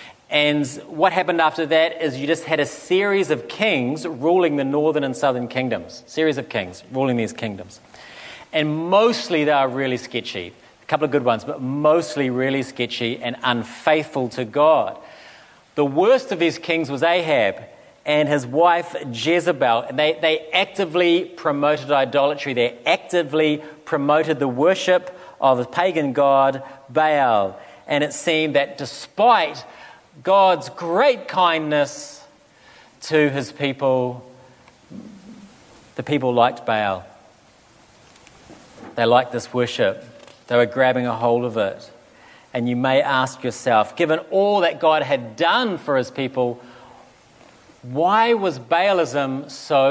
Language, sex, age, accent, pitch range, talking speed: English, male, 40-59, Australian, 130-170 Hz, 140 wpm